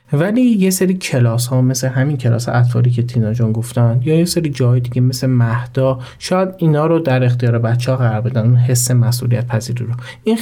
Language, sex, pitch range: Persian, male, 120-155 Hz